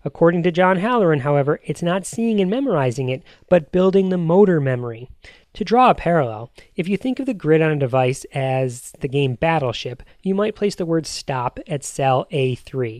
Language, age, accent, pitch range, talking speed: English, 30-49, American, 140-190 Hz, 195 wpm